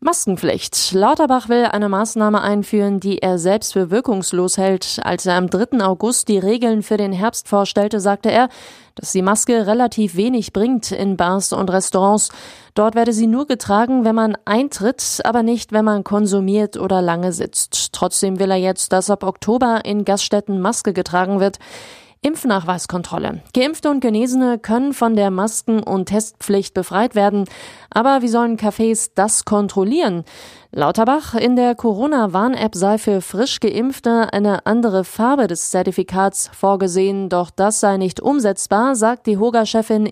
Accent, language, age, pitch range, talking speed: German, German, 20-39, 195-235 Hz, 155 wpm